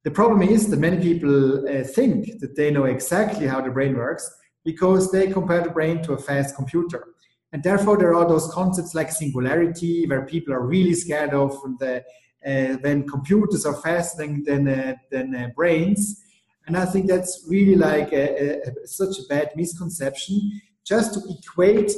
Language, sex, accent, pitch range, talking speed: English, male, German, 140-175 Hz, 175 wpm